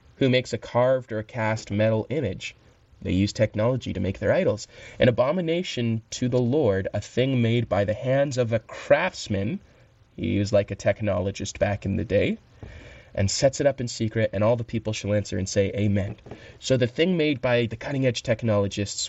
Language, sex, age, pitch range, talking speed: English, male, 20-39, 100-120 Hz, 200 wpm